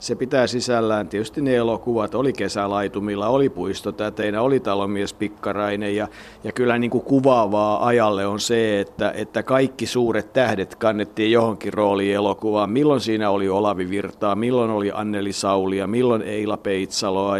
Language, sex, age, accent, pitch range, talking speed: Finnish, male, 50-69, native, 105-125 Hz, 150 wpm